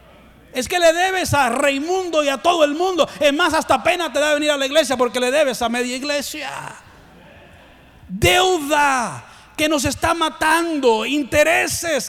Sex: male